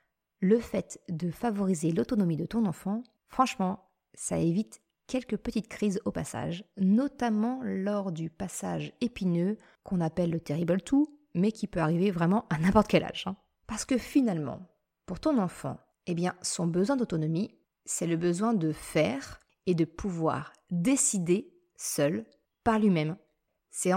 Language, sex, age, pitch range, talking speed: French, female, 30-49, 170-225 Hz, 150 wpm